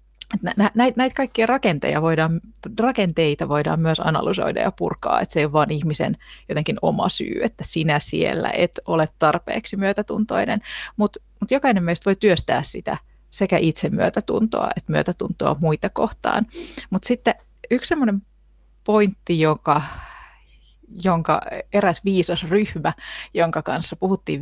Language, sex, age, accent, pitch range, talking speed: Finnish, female, 30-49, native, 155-210 Hz, 135 wpm